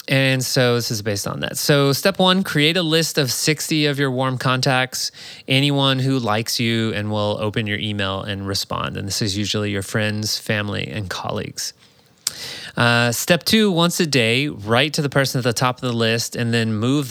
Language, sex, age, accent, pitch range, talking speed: English, male, 20-39, American, 105-140 Hz, 205 wpm